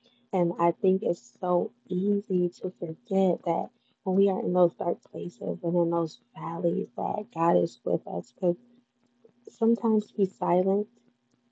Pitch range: 170-200 Hz